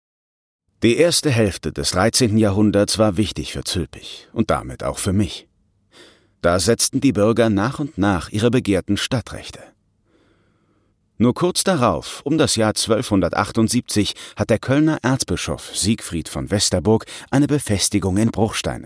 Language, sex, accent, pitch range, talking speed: German, male, German, 95-120 Hz, 135 wpm